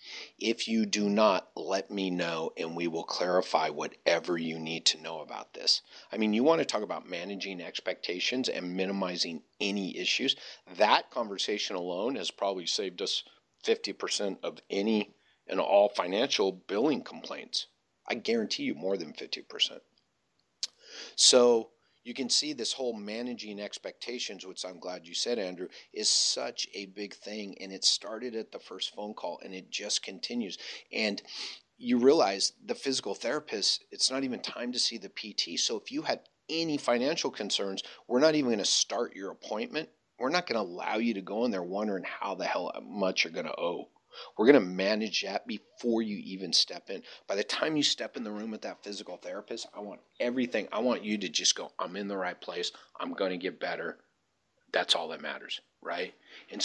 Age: 50-69